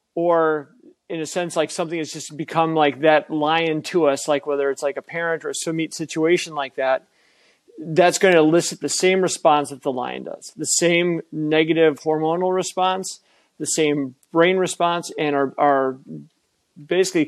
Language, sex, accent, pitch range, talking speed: English, male, American, 145-170 Hz, 175 wpm